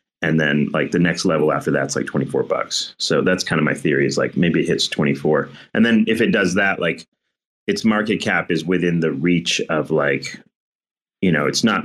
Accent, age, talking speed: American, 30-49, 220 wpm